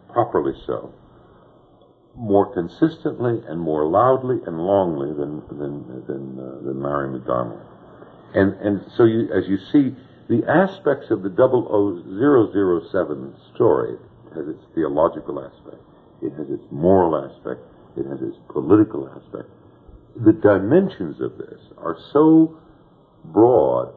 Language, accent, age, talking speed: English, American, 60-79, 140 wpm